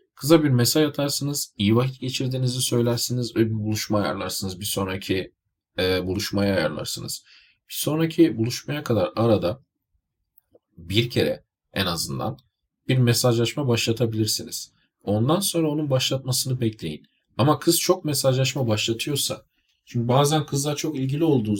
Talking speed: 125 wpm